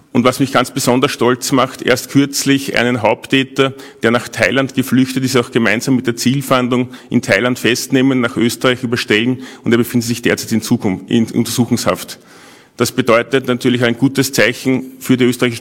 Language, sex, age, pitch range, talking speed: German, male, 40-59, 120-135 Hz, 175 wpm